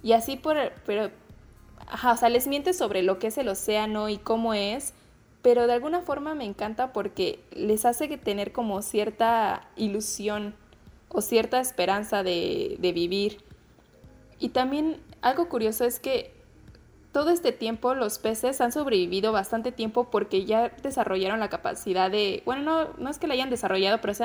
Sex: female